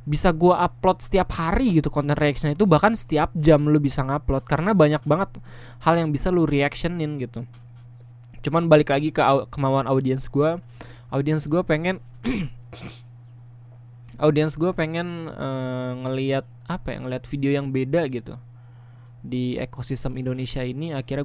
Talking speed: 145 wpm